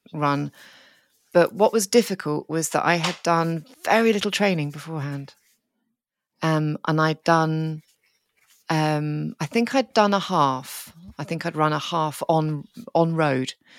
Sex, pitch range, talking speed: female, 150-195 Hz, 150 wpm